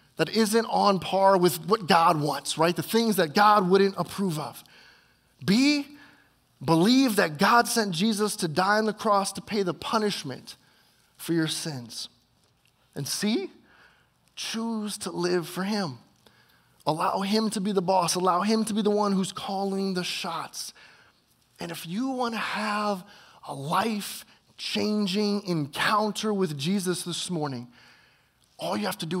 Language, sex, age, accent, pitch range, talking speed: English, male, 30-49, American, 165-210 Hz, 155 wpm